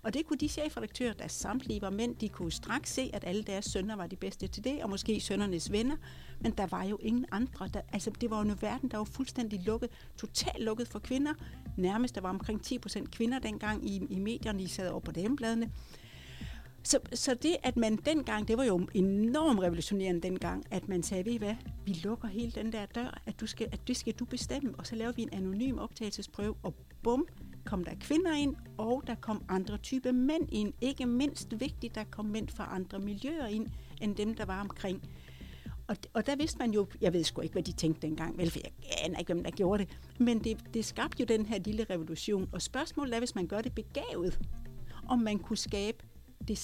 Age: 60-79